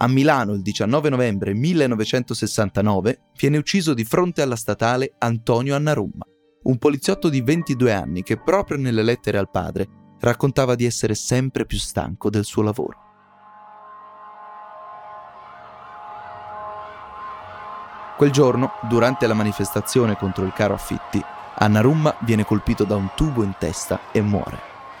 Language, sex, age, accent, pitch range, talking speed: Italian, male, 20-39, native, 110-155 Hz, 125 wpm